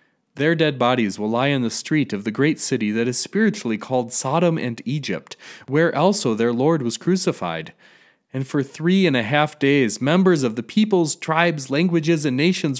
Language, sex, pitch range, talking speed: English, male, 125-170 Hz, 190 wpm